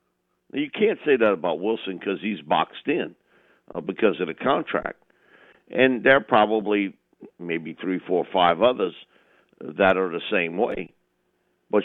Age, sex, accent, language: 50-69, male, American, English